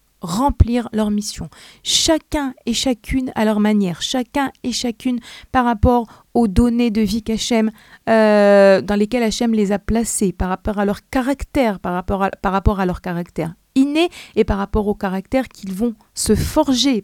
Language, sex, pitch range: French, female, 200-250 Hz